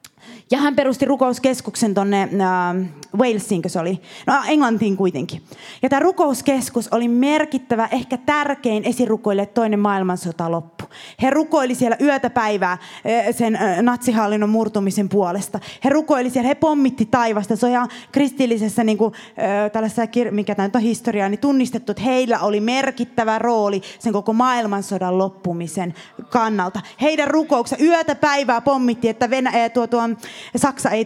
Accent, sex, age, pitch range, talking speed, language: native, female, 20-39, 215-285 Hz, 140 wpm, Finnish